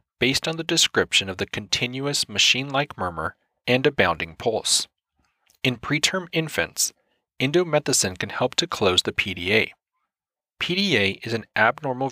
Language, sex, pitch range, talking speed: English, male, 115-155 Hz, 135 wpm